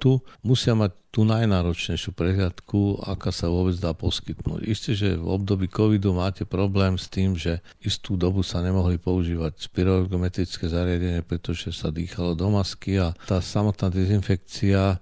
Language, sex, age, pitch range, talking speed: Slovak, male, 50-69, 85-105 Hz, 145 wpm